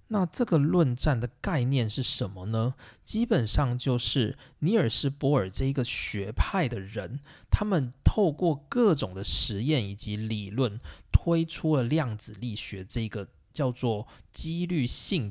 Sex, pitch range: male, 110-160 Hz